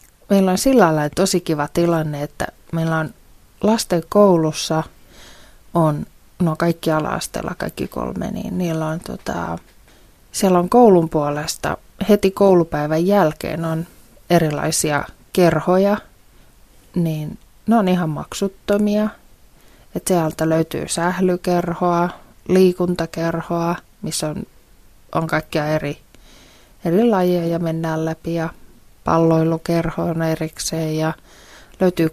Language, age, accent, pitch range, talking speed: Finnish, 30-49, native, 160-185 Hz, 110 wpm